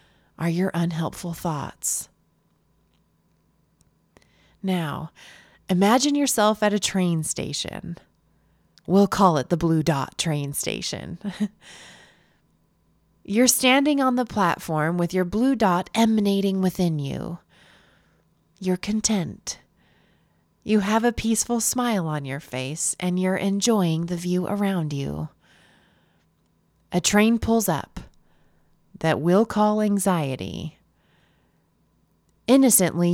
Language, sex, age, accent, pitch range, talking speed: English, female, 20-39, American, 170-215 Hz, 105 wpm